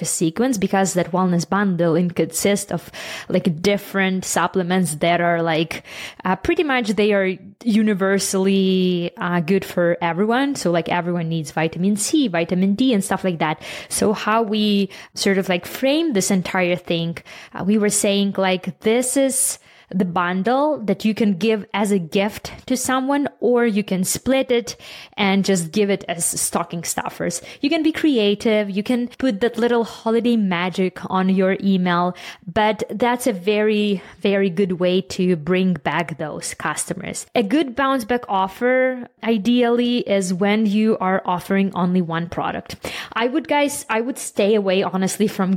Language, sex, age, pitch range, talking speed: English, female, 20-39, 185-225 Hz, 165 wpm